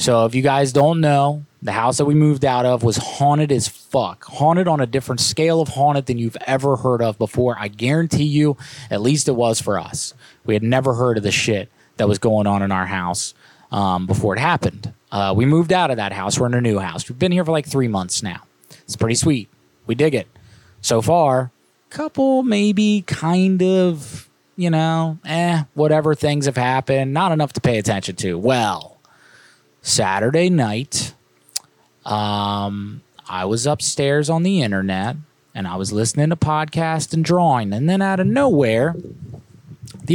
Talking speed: 190 wpm